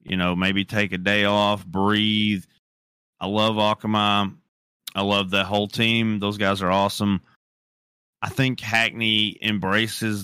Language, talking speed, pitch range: English, 140 wpm, 95-110 Hz